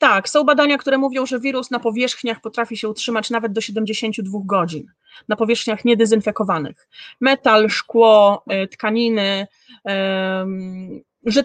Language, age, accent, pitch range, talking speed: Polish, 30-49, native, 210-265 Hz, 120 wpm